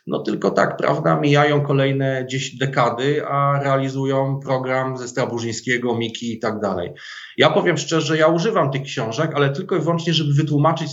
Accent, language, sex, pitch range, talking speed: native, Polish, male, 130-155 Hz, 170 wpm